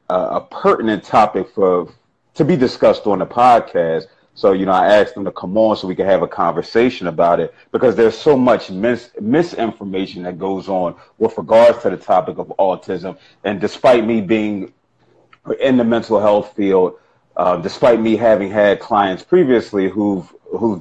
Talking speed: 180 wpm